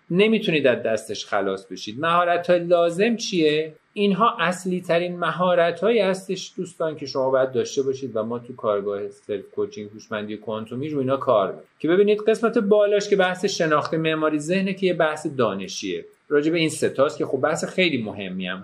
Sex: male